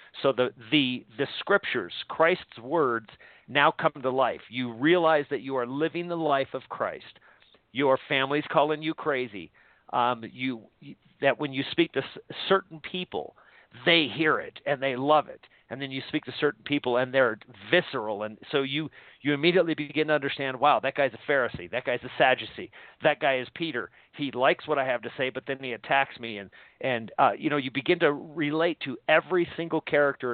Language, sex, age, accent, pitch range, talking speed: English, male, 50-69, American, 125-150 Hz, 195 wpm